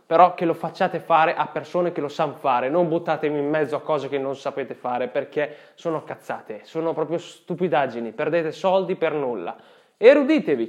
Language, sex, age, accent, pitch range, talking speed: Italian, male, 20-39, native, 160-225 Hz, 180 wpm